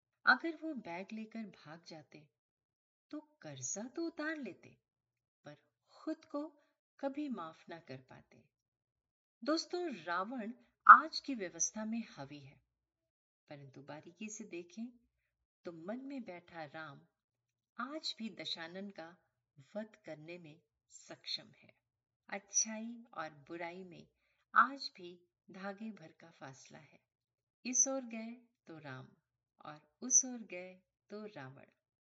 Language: Hindi